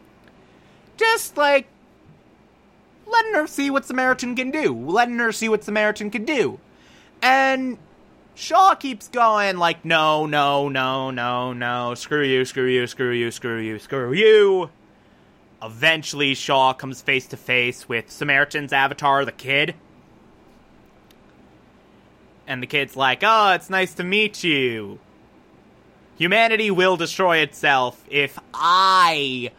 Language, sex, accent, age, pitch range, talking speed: English, male, American, 20-39, 130-200 Hz, 130 wpm